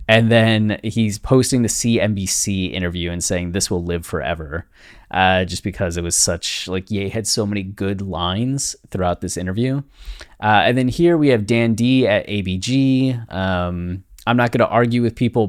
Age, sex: 20-39, male